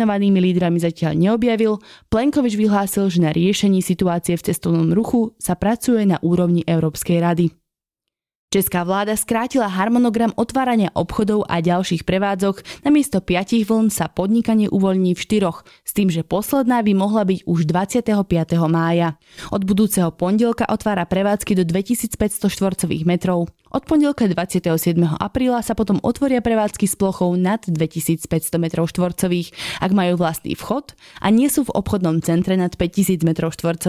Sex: female